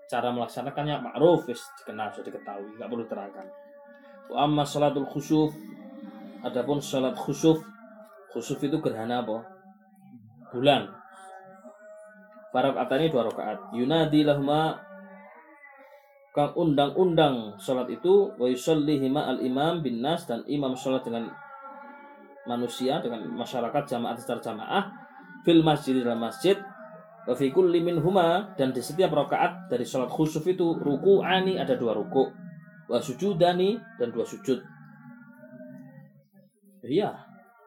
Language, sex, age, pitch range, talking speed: Malay, male, 20-39, 130-205 Hz, 110 wpm